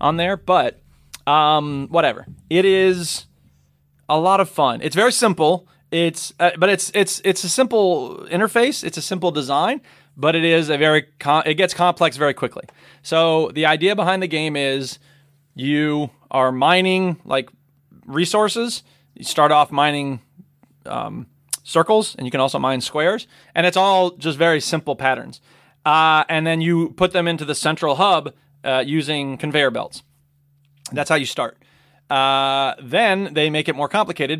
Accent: American